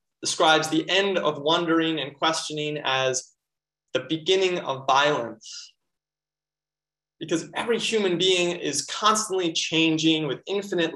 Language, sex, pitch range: English, male, 145-165 Hz